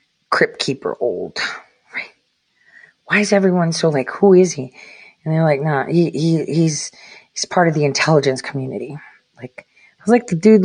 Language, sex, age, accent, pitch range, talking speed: English, female, 30-49, American, 150-205 Hz, 180 wpm